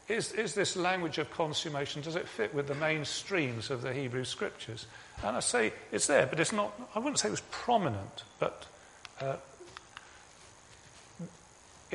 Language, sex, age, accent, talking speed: English, male, 40-59, British, 165 wpm